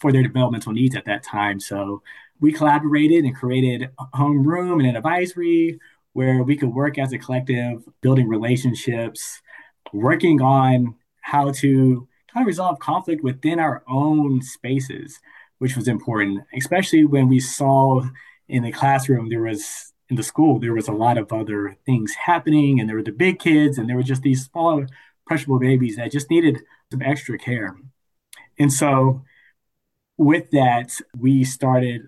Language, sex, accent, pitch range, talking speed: English, male, American, 115-140 Hz, 165 wpm